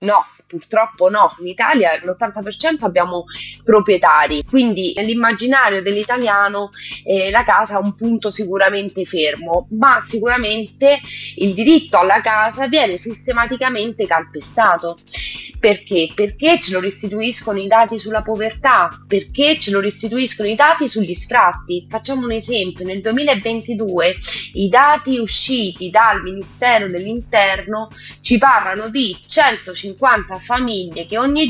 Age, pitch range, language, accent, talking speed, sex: 20-39, 195-250 Hz, Italian, native, 120 wpm, female